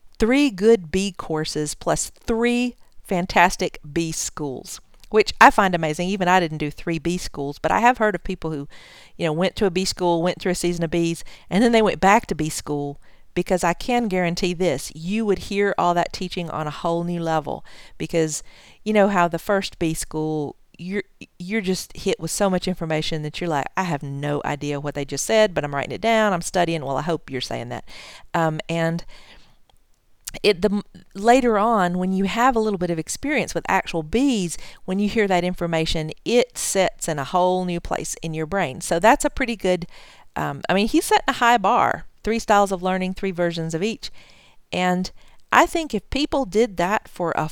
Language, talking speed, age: English, 210 wpm, 40-59